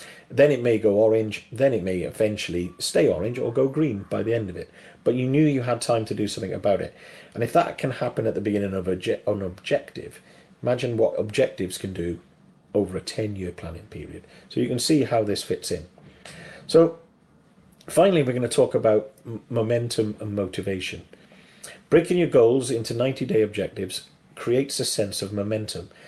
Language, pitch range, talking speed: English, 100-125 Hz, 185 wpm